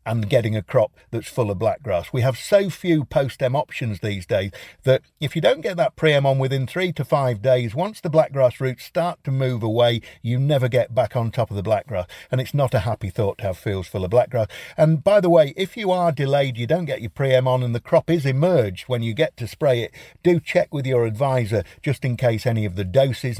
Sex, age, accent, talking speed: male, 50-69, British, 245 wpm